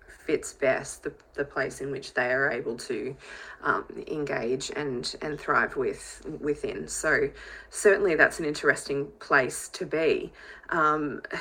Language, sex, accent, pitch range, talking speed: English, female, Australian, 145-235 Hz, 140 wpm